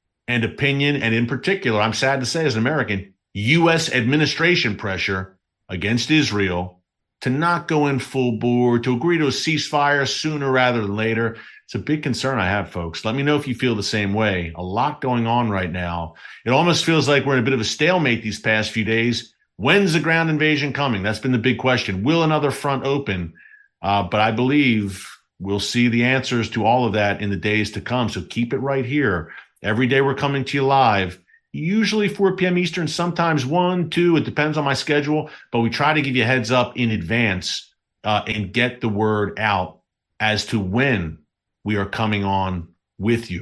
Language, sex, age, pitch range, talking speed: English, male, 50-69, 105-140 Hz, 205 wpm